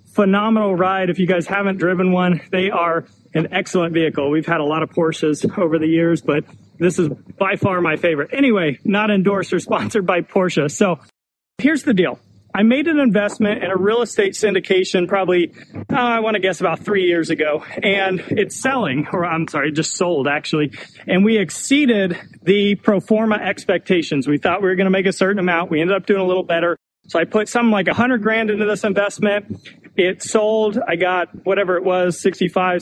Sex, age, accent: male, 30-49, American